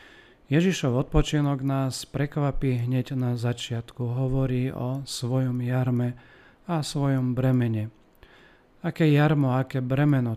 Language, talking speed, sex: Slovak, 105 wpm, male